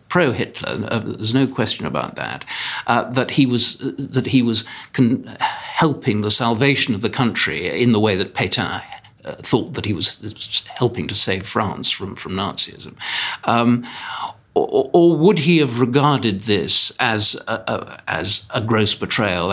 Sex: male